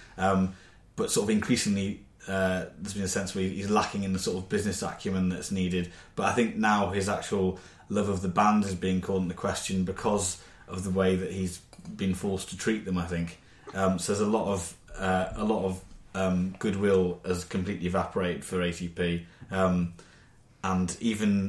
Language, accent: English, British